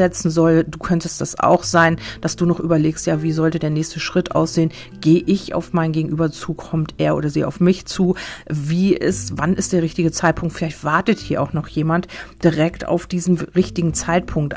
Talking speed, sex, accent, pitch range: 195 wpm, female, German, 155-175 Hz